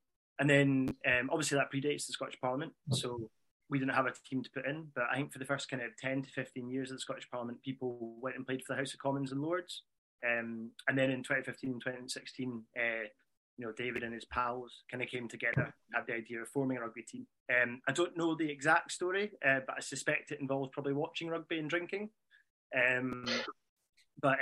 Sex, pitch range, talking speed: male, 125-140 Hz, 225 wpm